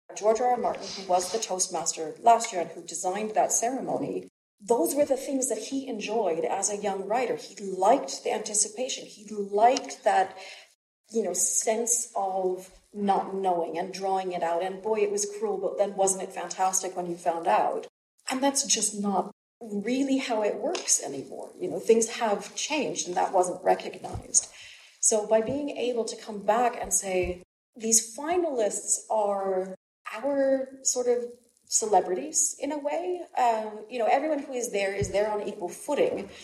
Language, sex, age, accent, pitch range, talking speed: English, female, 40-59, Canadian, 195-245 Hz, 175 wpm